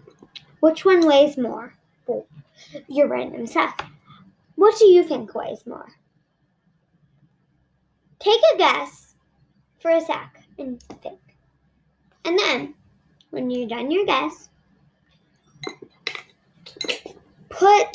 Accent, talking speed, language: American, 100 wpm, English